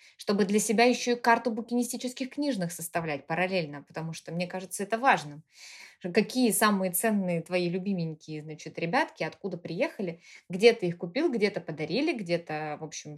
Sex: female